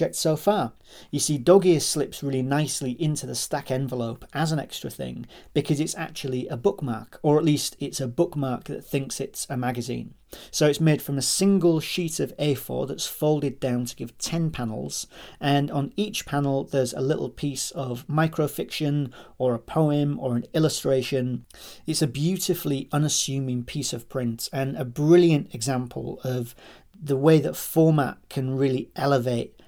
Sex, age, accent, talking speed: male, 40-59, British, 170 wpm